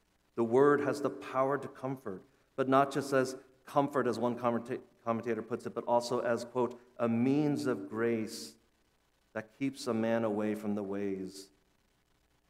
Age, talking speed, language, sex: 40-59, 160 wpm, English, male